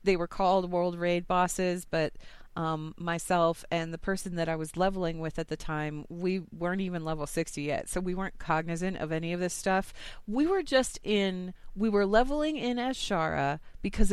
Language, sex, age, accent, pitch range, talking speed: English, female, 30-49, American, 155-195 Hz, 195 wpm